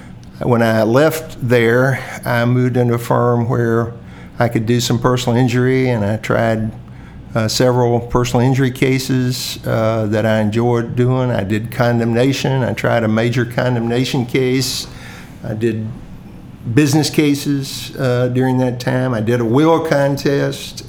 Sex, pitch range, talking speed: male, 115-130 Hz, 145 wpm